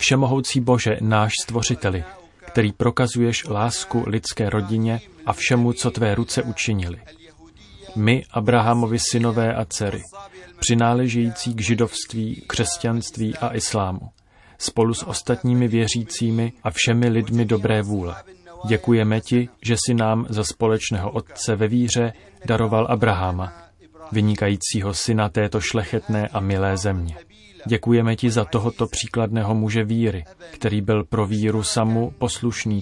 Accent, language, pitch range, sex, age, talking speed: native, Czech, 105-115 Hz, male, 30-49, 125 wpm